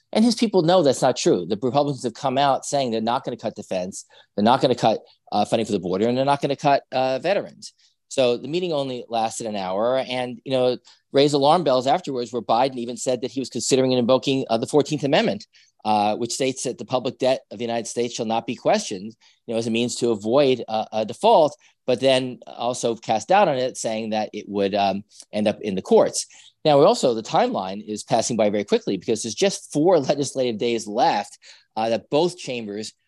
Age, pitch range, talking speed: 40-59, 105-130 Hz, 230 wpm